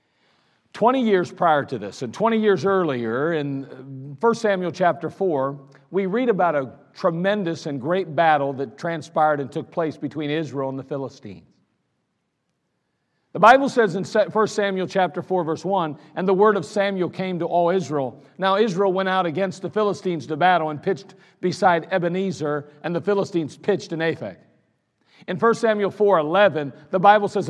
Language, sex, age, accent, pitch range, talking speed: English, male, 50-69, American, 165-210 Hz, 170 wpm